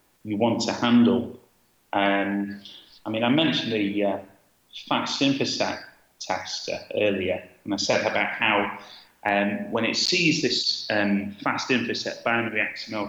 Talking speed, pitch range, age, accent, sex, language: 140 wpm, 105-175 Hz, 30-49, British, male, English